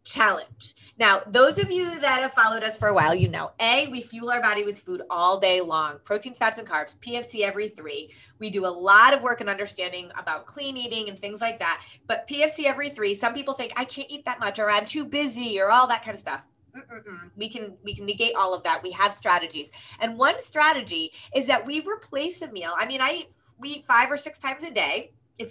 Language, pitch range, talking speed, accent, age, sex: English, 205-305 Hz, 240 wpm, American, 30-49, female